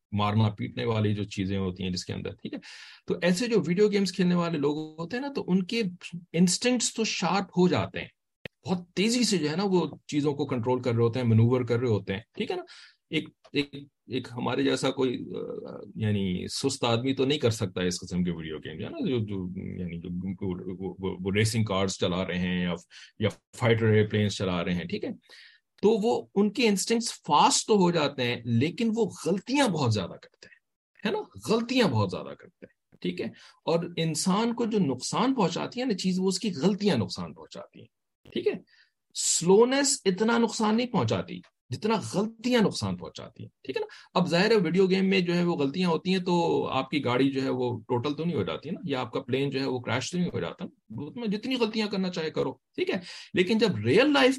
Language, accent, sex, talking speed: English, Indian, male, 190 wpm